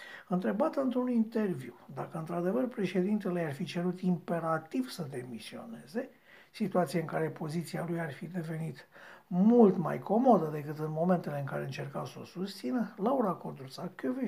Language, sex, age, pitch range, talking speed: Romanian, male, 60-79, 150-185 Hz, 145 wpm